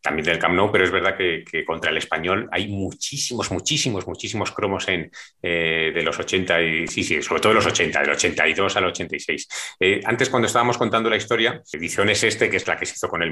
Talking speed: 230 wpm